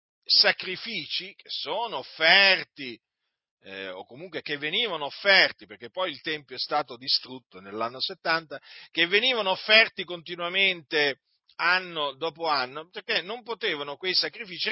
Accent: native